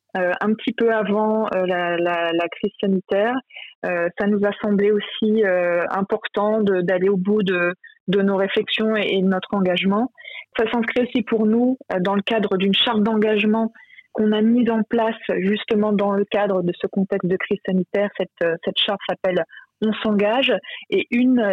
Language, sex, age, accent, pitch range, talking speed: French, female, 20-39, French, 195-225 Hz, 190 wpm